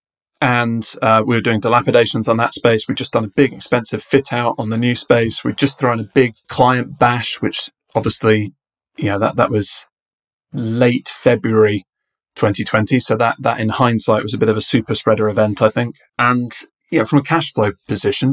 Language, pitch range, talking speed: English, 110-125 Hz, 205 wpm